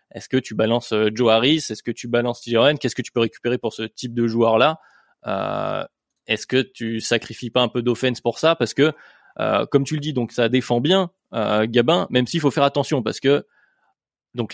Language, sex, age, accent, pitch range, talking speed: French, male, 20-39, French, 120-140 Hz, 220 wpm